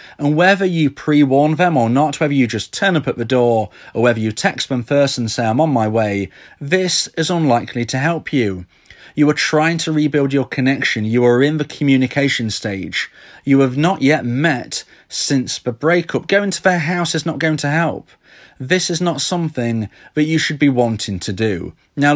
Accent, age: British, 30-49